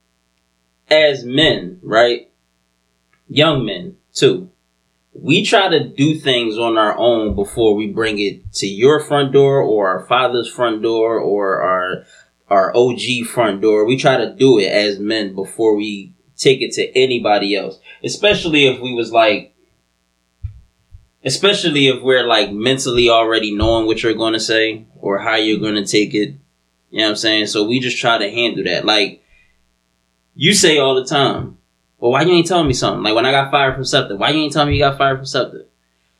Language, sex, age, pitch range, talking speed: English, male, 20-39, 95-135 Hz, 185 wpm